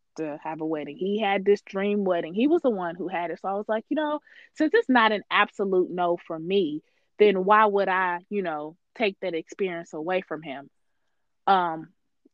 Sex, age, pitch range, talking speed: female, 20-39, 185-240 Hz, 210 wpm